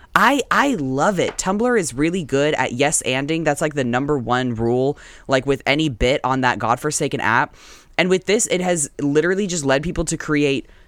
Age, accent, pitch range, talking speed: 20-39, American, 120-180 Hz, 195 wpm